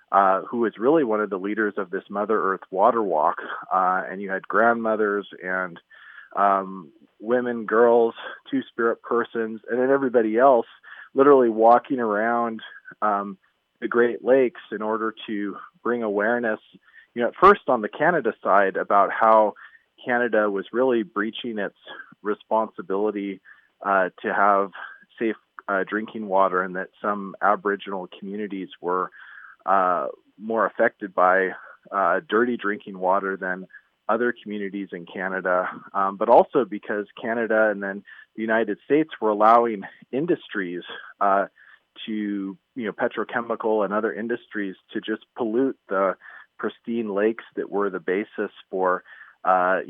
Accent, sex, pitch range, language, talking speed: American, male, 95-115 Hz, English, 140 wpm